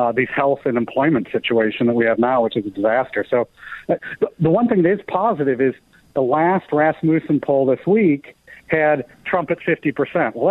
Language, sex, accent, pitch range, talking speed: English, male, American, 125-160 Hz, 200 wpm